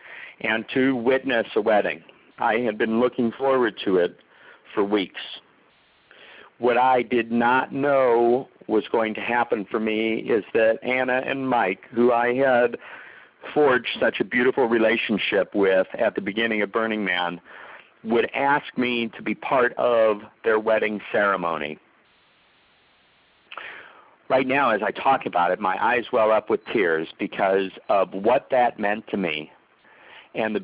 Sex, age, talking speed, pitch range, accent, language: male, 50-69, 150 wpm, 110-135 Hz, American, English